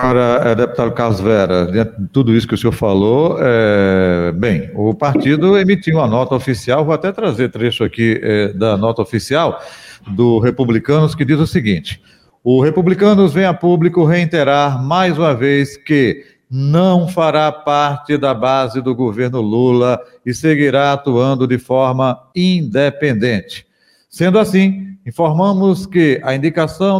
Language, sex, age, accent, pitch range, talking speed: Portuguese, male, 40-59, Brazilian, 125-170 Hz, 135 wpm